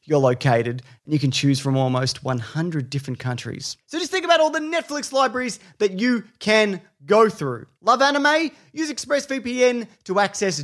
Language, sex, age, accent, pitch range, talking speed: English, male, 30-49, Australian, 135-215 Hz, 170 wpm